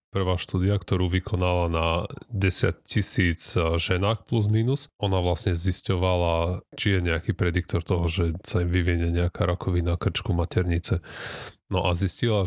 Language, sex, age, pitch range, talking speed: Slovak, male, 30-49, 85-100 Hz, 140 wpm